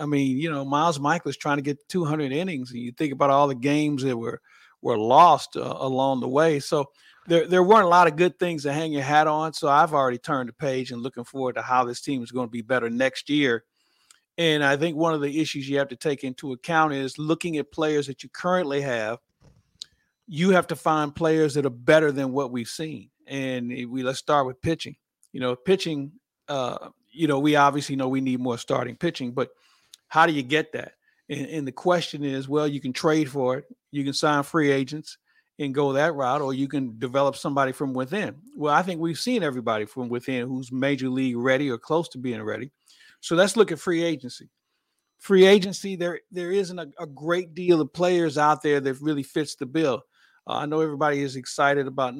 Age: 50-69